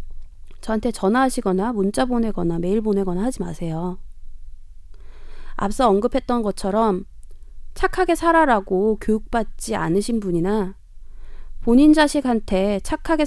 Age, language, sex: 20-39, Korean, female